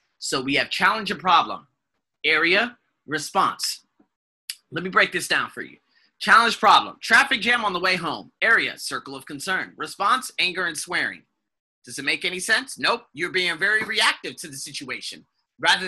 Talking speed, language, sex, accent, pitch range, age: 170 wpm, English, male, American, 150-205 Hz, 30-49